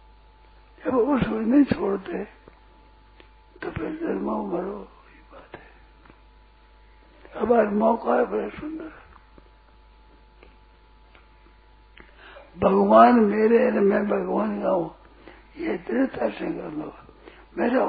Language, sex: Hindi, male